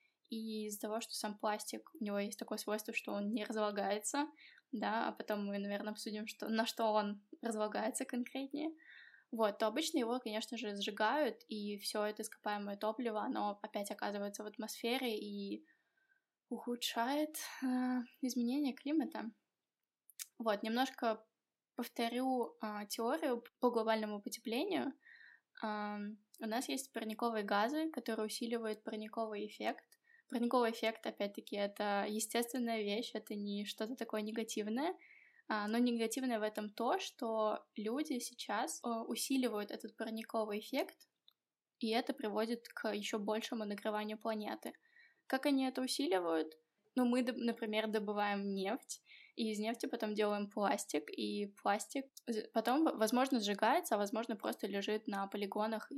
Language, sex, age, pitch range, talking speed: Russian, female, 10-29, 215-255 Hz, 130 wpm